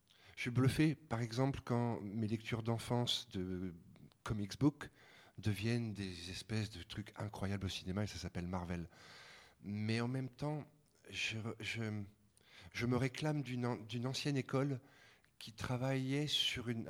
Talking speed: 145 wpm